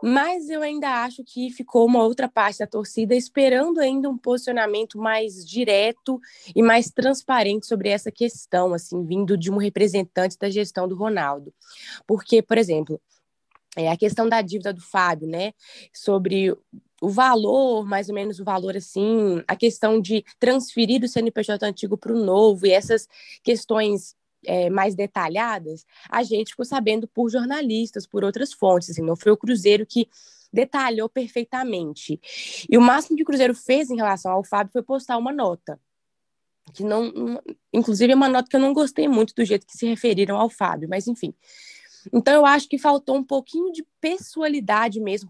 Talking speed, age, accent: 170 wpm, 20-39, Brazilian